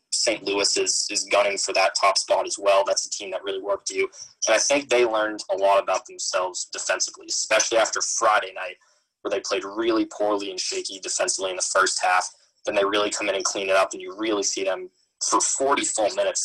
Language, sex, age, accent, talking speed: English, male, 20-39, American, 230 wpm